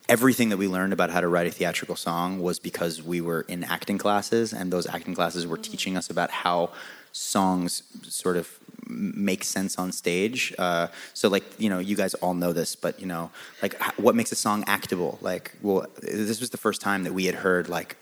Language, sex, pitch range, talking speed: English, male, 90-105 Hz, 215 wpm